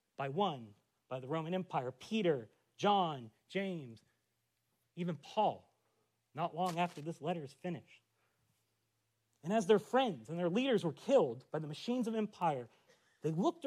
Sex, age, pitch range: male, 40-59, 135-210 Hz